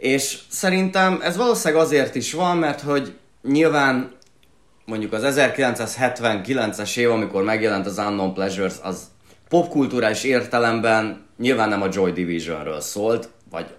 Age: 30-49